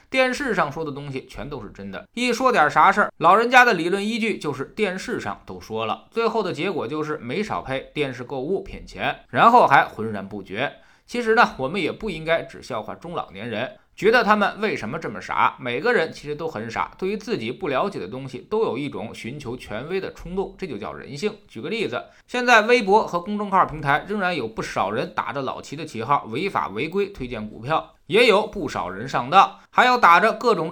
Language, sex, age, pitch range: Chinese, male, 20-39, 150-220 Hz